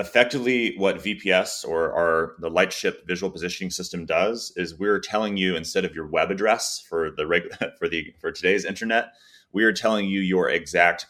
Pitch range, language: 85-100 Hz, English